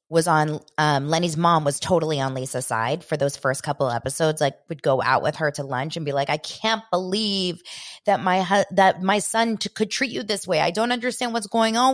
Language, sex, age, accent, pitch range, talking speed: English, female, 20-39, American, 160-225 Hz, 225 wpm